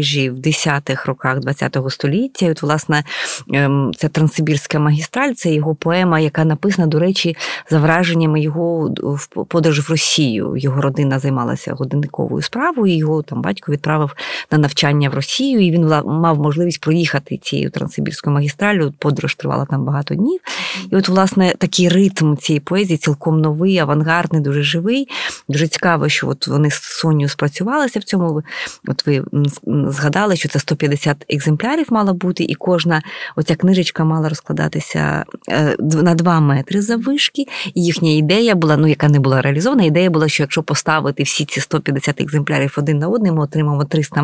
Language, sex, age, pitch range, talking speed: Ukrainian, female, 20-39, 145-175 Hz, 160 wpm